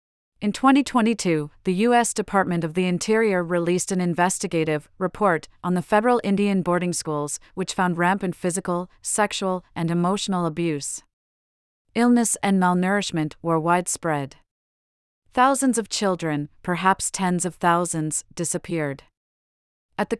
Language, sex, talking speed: English, female, 120 wpm